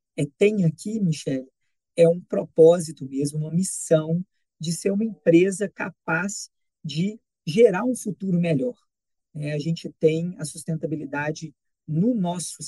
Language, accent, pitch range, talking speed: Portuguese, Brazilian, 150-180 Hz, 135 wpm